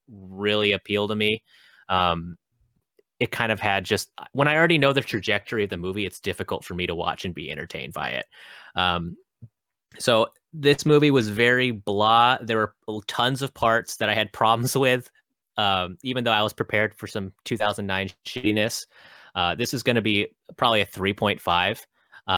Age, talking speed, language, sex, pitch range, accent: 30-49, 175 wpm, English, male, 95-120 Hz, American